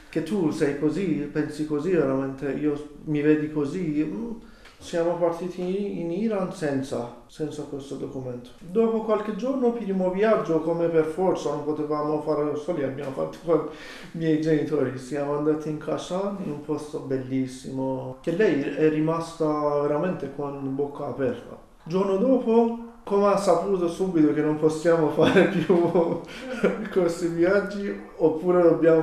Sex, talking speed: male, 145 wpm